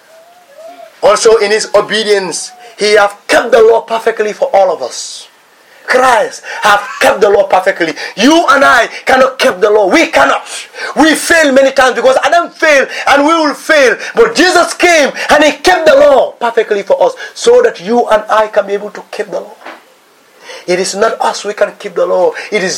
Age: 30-49